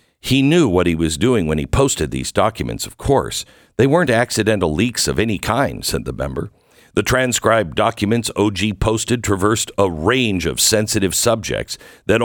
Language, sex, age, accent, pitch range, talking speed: English, male, 60-79, American, 95-135 Hz, 170 wpm